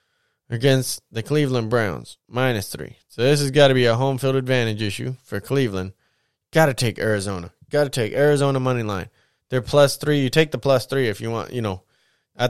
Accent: American